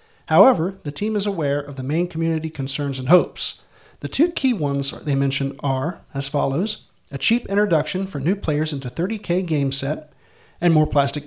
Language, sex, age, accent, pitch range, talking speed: English, male, 40-59, American, 140-195 Hz, 180 wpm